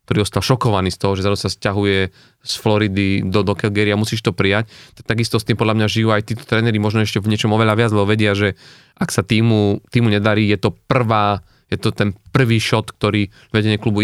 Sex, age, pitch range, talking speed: male, 30-49, 105-125 Hz, 225 wpm